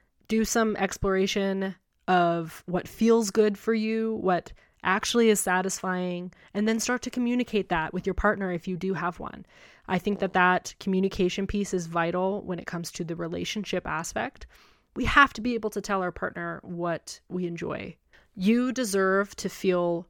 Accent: American